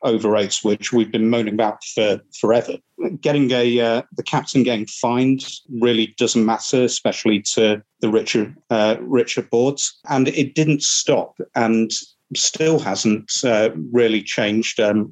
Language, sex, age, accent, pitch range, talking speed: English, male, 40-59, British, 110-130 Hz, 145 wpm